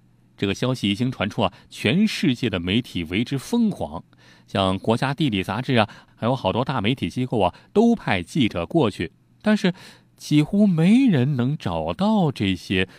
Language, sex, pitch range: Chinese, male, 95-155 Hz